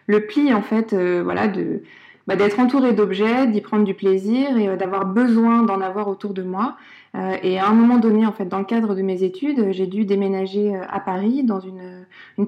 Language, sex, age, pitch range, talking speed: French, female, 20-39, 195-235 Hz, 225 wpm